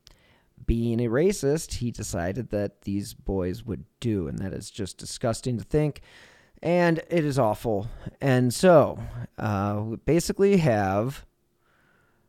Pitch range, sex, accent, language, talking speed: 100-125 Hz, male, American, English, 130 wpm